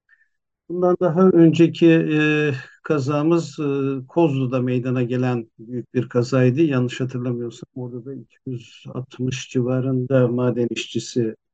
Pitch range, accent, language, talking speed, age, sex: 125-150 Hz, native, Turkish, 95 wpm, 60-79, male